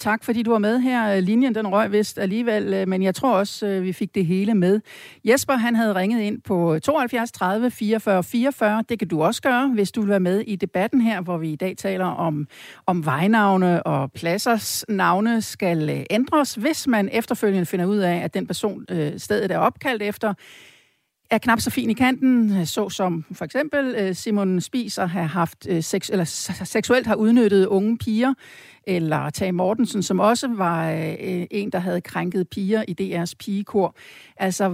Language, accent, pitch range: Danish, native, 180-230 Hz